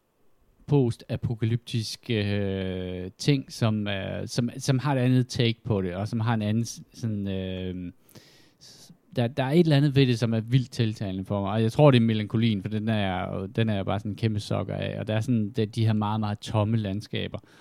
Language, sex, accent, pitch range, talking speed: Danish, male, native, 100-125 Hz, 215 wpm